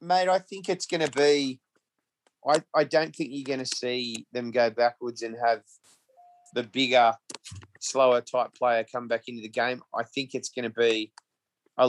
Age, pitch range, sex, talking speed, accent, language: 30-49, 115-130 Hz, male, 190 wpm, Australian, English